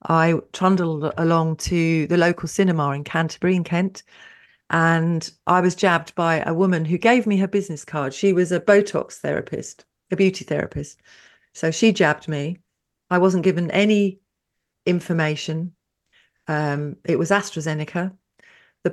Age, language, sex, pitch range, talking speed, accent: 40-59, English, female, 155-180 Hz, 145 wpm, British